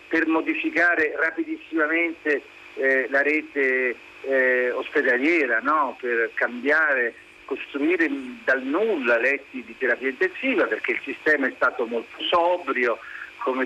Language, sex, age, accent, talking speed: Italian, male, 50-69, native, 115 wpm